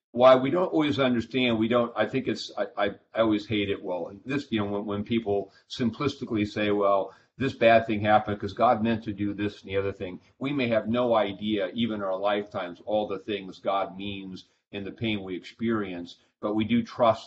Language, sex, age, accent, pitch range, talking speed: English, male, 40-59, American, 100-115 Hz, 220 wpm